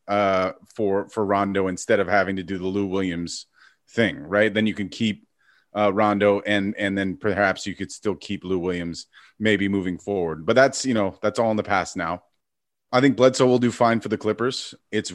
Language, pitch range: English, 95-110 Hz